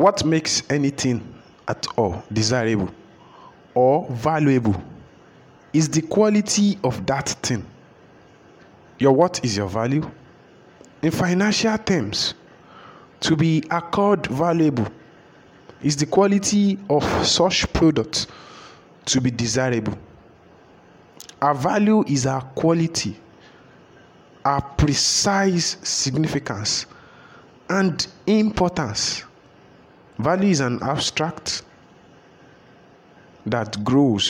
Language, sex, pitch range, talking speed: English, male, 115-160 Hz, 90 wpm